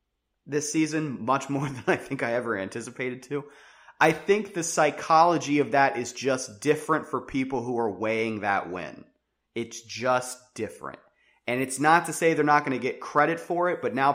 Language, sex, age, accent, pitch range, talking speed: English, male, 30-49, American, 125-155 Hz, 190 wpm